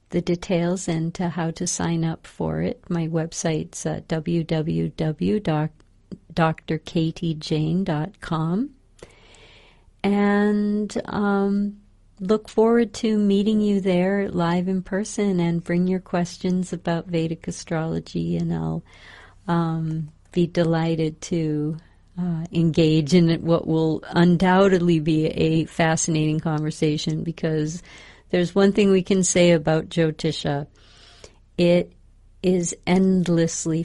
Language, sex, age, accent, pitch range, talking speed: English, female, 50-69, American, 155-180 Hz, 105 wpm